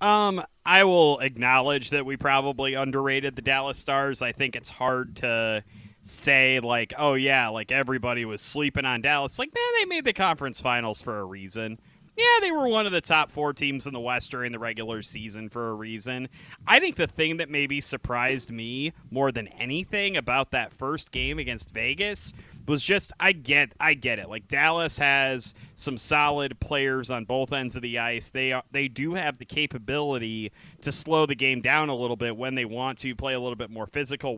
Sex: male